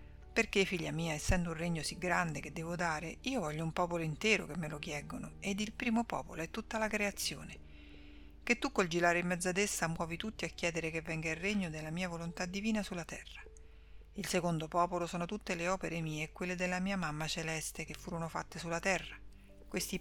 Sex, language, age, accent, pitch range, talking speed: female, Italian, 50-69, native, 160-195 Hz, 210 wpm